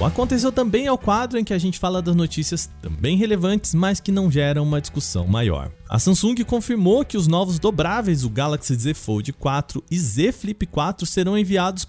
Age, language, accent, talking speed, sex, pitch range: 20-39, Portuguese, Brazilian, 200 wpm, male, 135-200 Hz